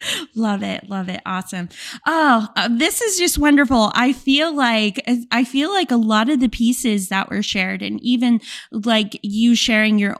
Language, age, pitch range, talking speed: English, 20-39, 200-240 Hz, 175 wpm